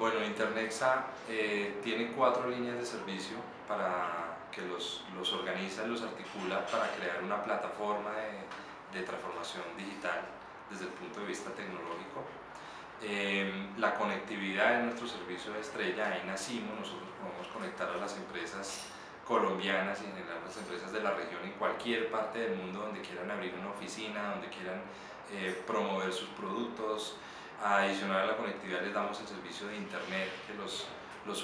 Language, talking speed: Spanish, 160 wpm